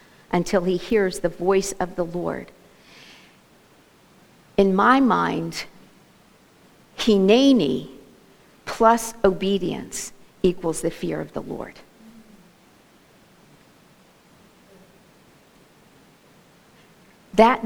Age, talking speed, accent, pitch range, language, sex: 50-69, 70 wpm, American, 200-270 Hz, English, female